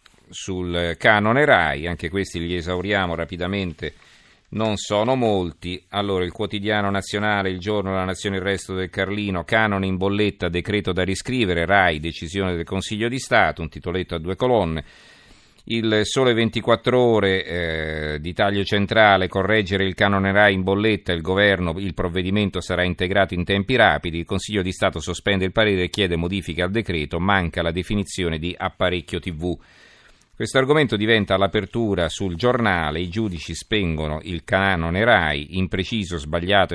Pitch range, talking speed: 85-100 Hz, 155 wpm